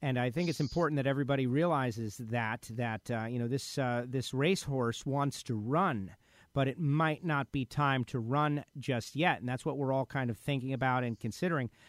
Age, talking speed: 40-59, 205 wpm